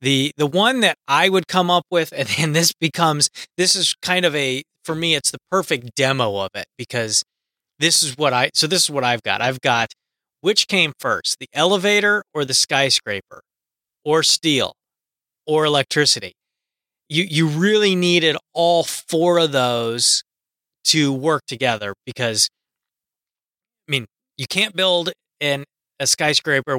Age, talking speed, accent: 30-49, 160 wpm, American